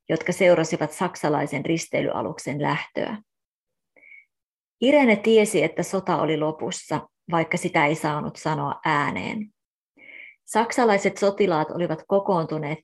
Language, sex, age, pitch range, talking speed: Finnish, female, 30-49, 160-205 Hz, 100 wpm